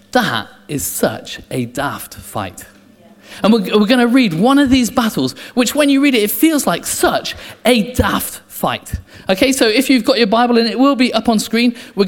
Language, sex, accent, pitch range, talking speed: English, male, British, 145-240 Hz, 215 wpm